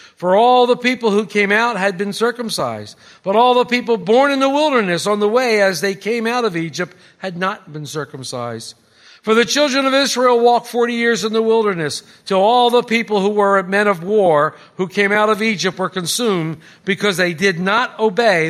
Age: 60-79